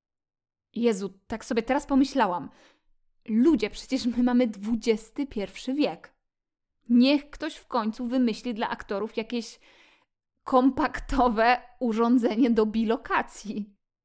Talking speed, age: 100 wpm, 20-39